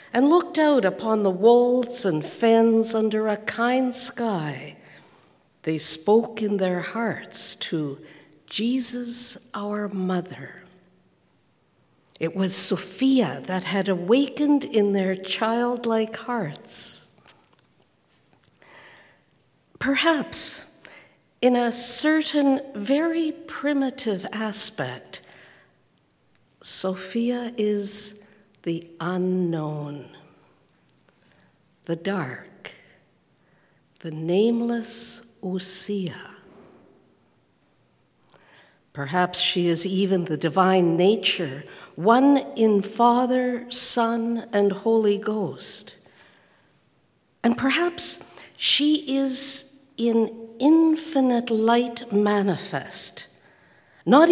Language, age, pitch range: English, 60-79, 185-245 Hz